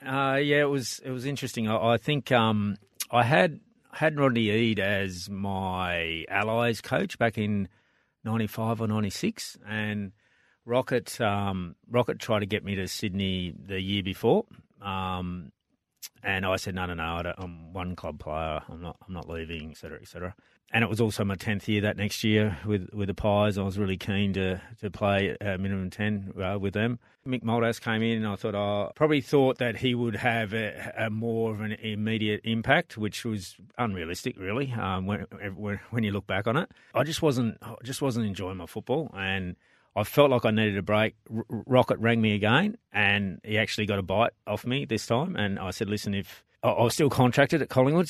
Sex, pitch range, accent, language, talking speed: male, 95-120 Hz, Australian, English, 205 wpm